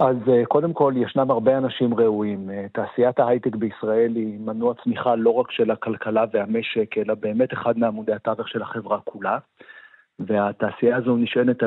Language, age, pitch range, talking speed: Hebrew, 50-69, 115-130 Hz, 150 wpm